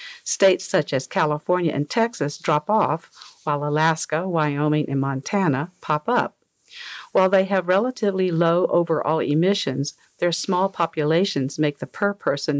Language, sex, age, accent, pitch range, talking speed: English, female, 50-69, American, 155-190 Hz, 135 wpm